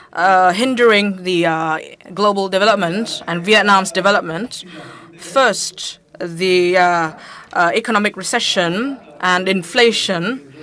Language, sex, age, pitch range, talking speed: English, female, 20-39, 175-215 Hz, 95 wpm